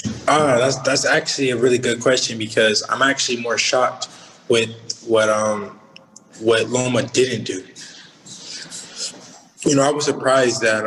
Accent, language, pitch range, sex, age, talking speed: American, English, 120-165 Hz, male, 20-39, 145 wpm